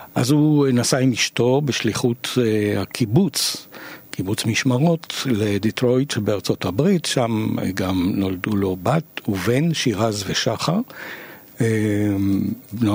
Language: Hebrew